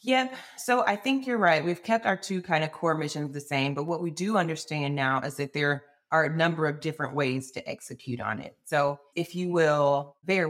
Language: English